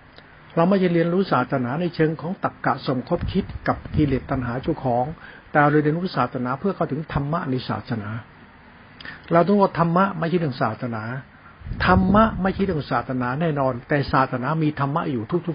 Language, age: Thai, 60-79